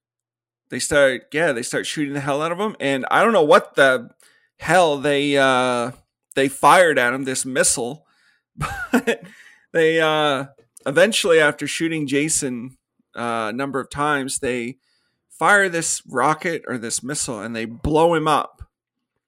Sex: male